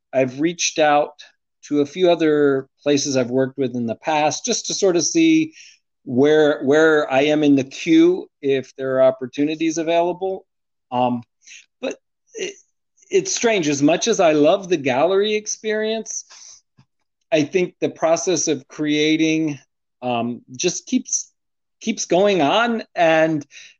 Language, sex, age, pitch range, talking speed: English, male, 40-59, 135-180 Hz, 140 wpm